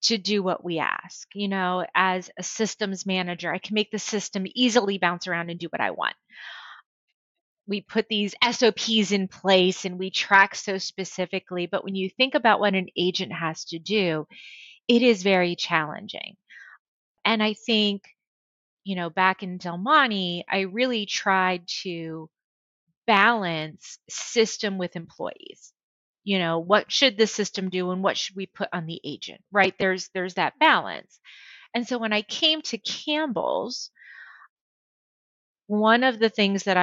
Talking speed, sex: 160 wpm, female